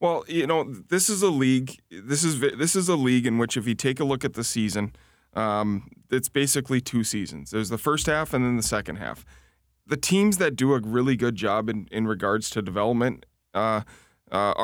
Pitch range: 105-130 Hz